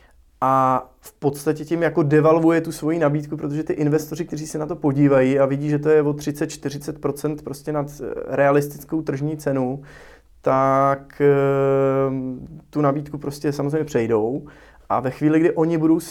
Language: Czech